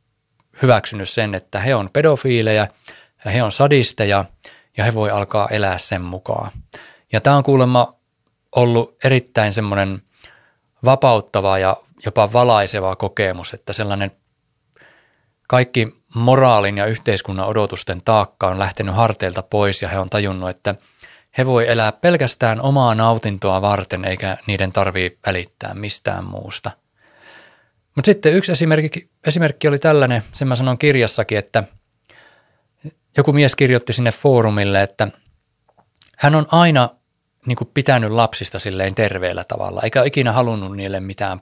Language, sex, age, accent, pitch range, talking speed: Finnish, male, 20-39, native, 100-125 Hz, 130 wpm